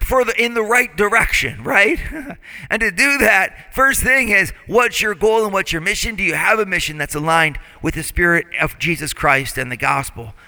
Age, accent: 40-59, American